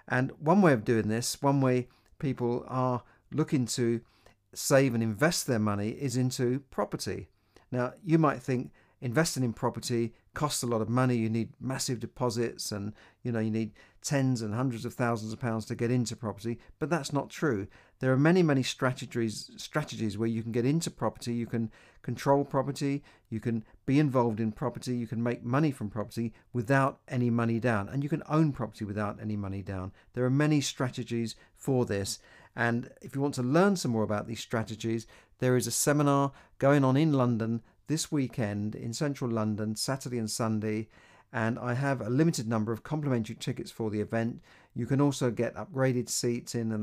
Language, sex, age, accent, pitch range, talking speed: English, male, 50-69, British, 110-135 Hz, 190 wpm